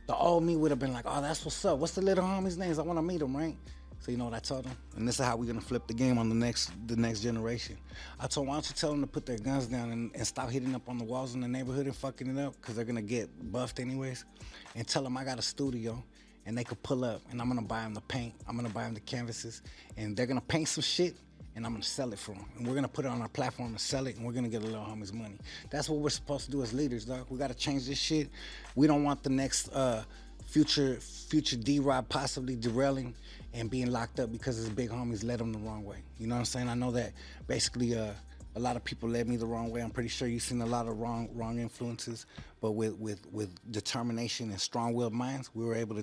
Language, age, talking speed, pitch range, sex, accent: English, 20-39, 280 wpm, 115-135 Hz, male, American